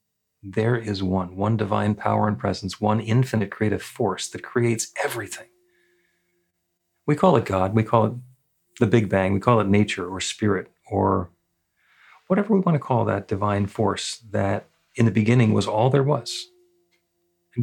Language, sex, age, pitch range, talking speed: English, male, 40-59, 100-130 Hz, 165 wpm